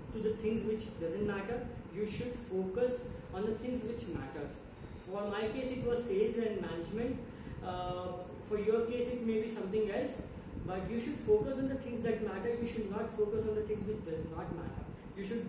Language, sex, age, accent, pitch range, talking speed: English, female, 20-39, Indian, 190-230 Hz, 205 wpm